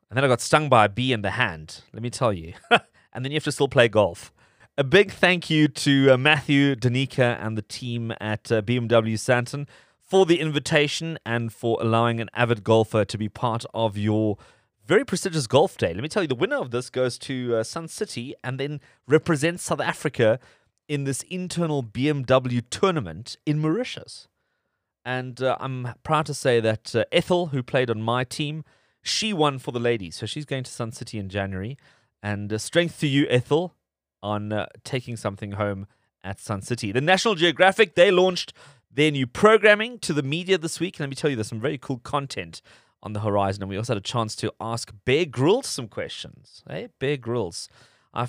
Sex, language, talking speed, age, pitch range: male, English, 205 wpm, 30-49, 110-150 Hz